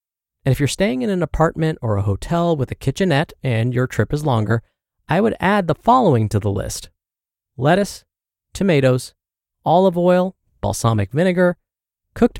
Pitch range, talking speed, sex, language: 110-175 Hz, 160 wpm, male, English